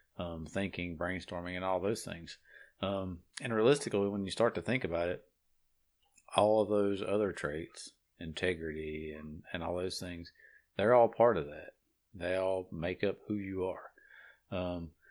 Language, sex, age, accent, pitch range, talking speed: English, male, 40-59, American, 85-95 Hz, 165 wpm